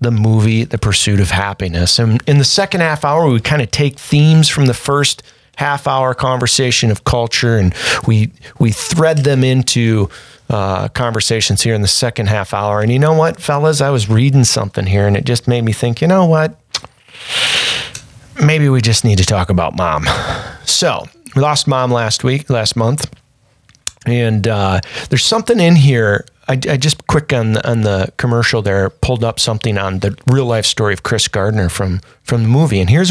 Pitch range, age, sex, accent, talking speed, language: 110-140 Hz, 40-59, male, American, 195 wpm, English